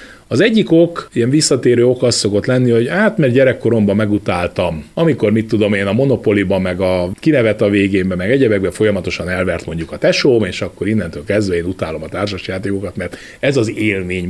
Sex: male